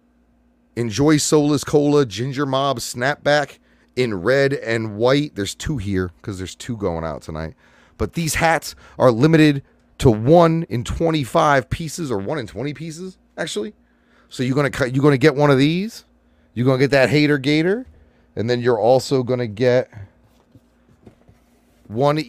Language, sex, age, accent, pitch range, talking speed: English, male, 30-49, American, 95-150 Hz, 155 wpm